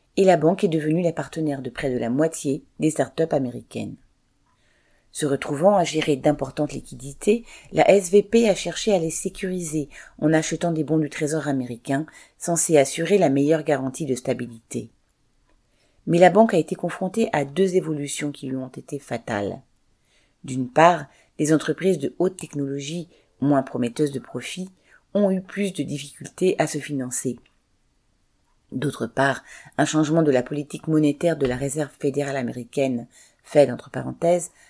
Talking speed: 155 wpm